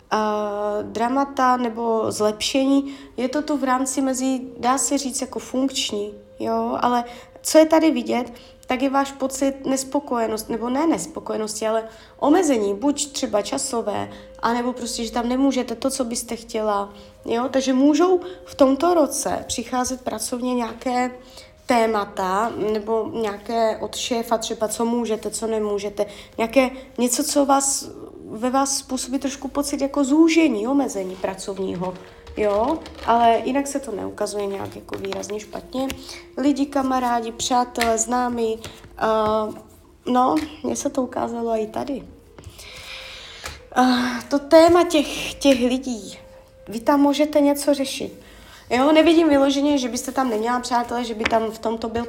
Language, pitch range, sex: Czech, 220-275 Hz, female